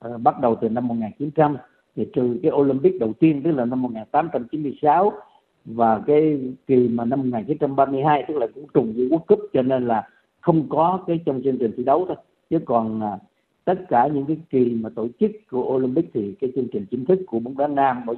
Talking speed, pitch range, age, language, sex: 210 wpm, 125-165 Hz, 50-69, Vietnamese, male